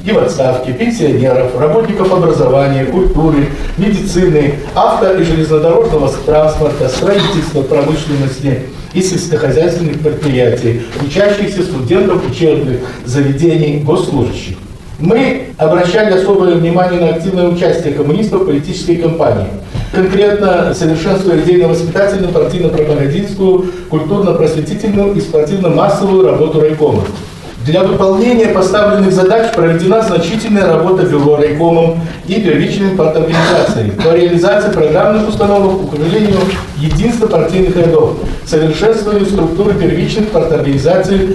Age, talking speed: 50-69, 95 wpm